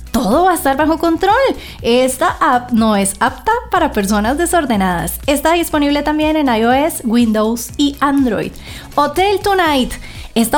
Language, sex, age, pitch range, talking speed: English, female, 20-39, 235-315 Hz, 140 wpm